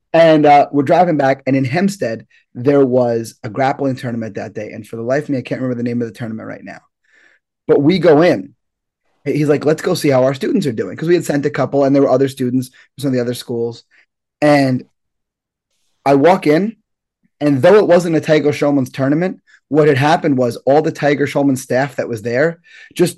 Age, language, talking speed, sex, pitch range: 20-39, English, 225 wpm, male, 125-155 Hz